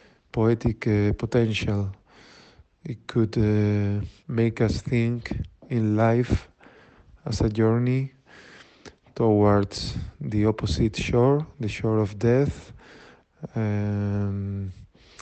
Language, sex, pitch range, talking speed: Italian, male, 105-125 Hz, 90 wpm